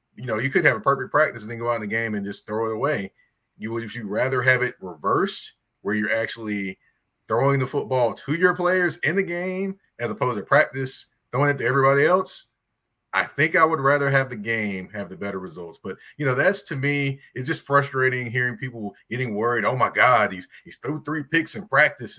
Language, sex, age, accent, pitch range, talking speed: English, male, 30-49, American, 105-140 Hz, 225 wpm